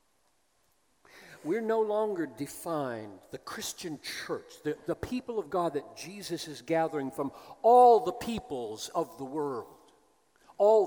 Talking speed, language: 135 wpm, English